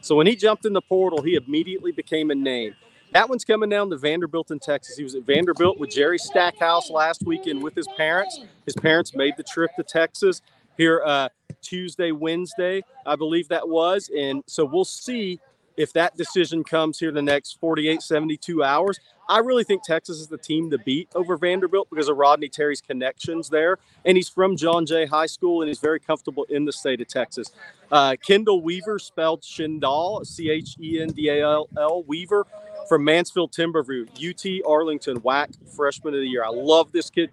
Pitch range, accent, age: 145-175 Hz, American, 40-59